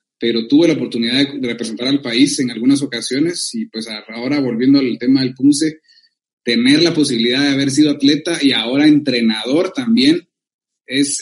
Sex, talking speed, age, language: male, 165 wpm, 30-49, Spanish